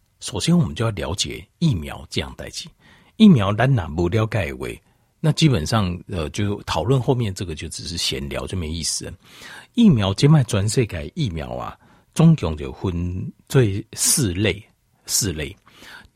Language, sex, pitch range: Chinese, male, 90-145 Hz